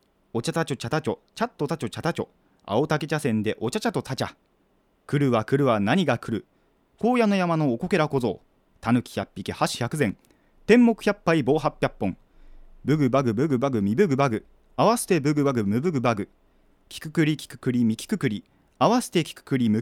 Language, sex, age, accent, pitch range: Japanese, male, 30-49, native, 110-165 Hz